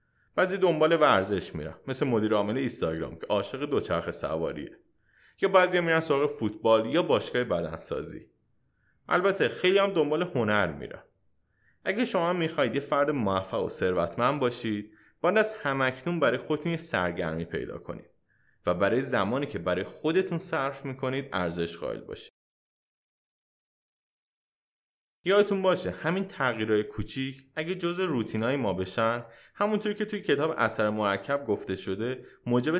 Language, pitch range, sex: Persian, 105-160 Hz, male